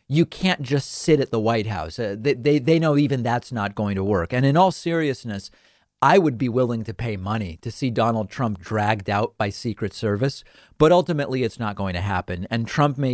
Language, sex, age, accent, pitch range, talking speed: English, male, 40-59, American, 110-140 Hz, 220 wpm